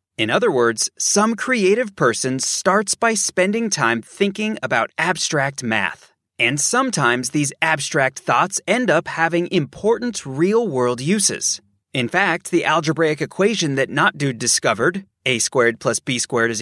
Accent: American